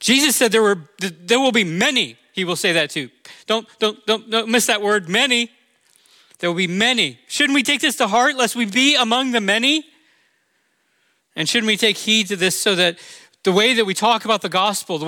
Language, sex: English, male